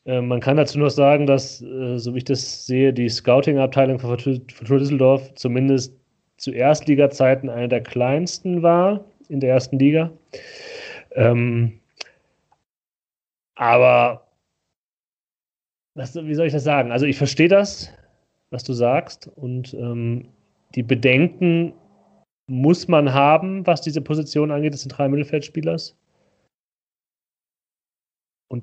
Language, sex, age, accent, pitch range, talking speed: German, male, 30-49, German, 115-145 Hz, 125 wpm